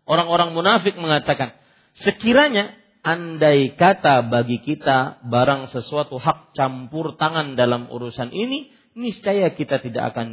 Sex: male